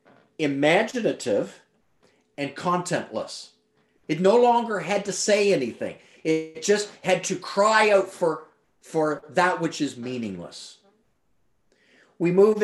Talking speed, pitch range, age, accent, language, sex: 115 wpm, 155-210 Hz, 40-59, American, English, male